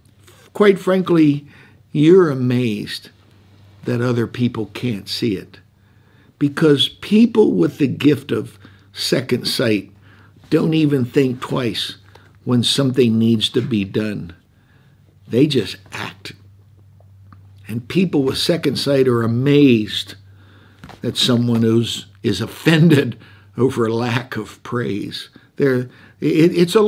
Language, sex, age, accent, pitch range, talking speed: English, male, 60-79, American, 105-145 Hz, 115 wpm